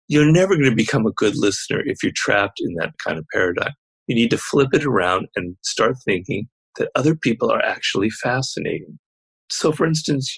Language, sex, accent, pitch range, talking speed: English, male, American, 110-150 Hz, 190 wpm